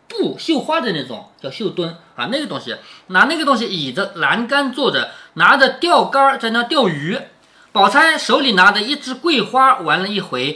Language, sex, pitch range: Chinese, male, 185-280 Hz